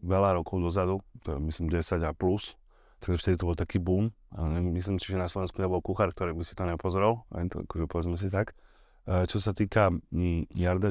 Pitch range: 90-105 Hz